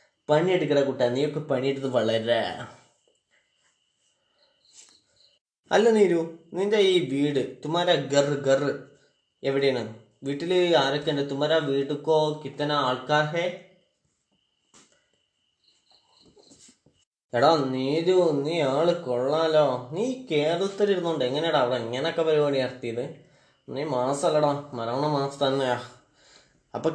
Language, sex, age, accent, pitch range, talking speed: Malayalam, male, 20-39, native, 130-160 Hz, 95 wpm